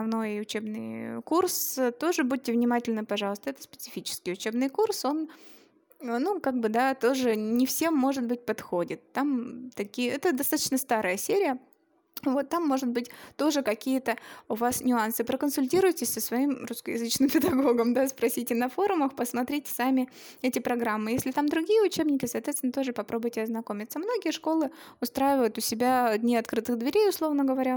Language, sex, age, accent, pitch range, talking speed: Russian, female, 20-39, native, 240-315 Hz, 145 wpm